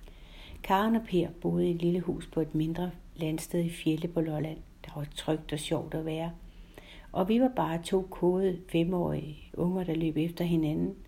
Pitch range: 155-180 Hz